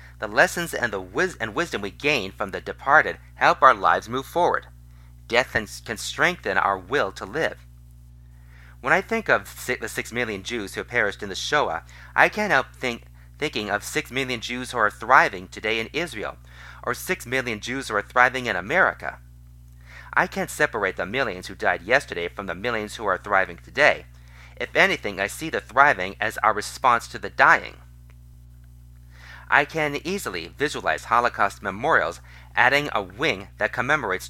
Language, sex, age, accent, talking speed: English, male, 40-59, American, 175 wpm